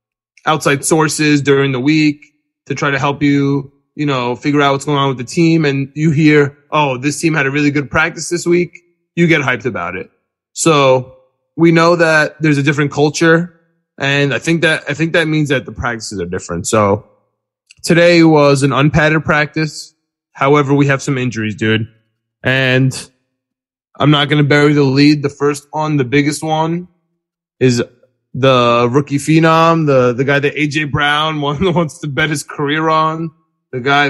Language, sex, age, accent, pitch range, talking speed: English, male, 20-39, American, 130-155 Hz, 180 wpm